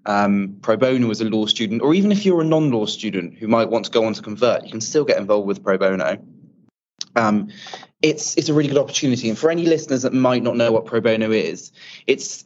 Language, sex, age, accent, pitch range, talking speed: English, male, 20-39, British, 110-135 Hz, 240 wpm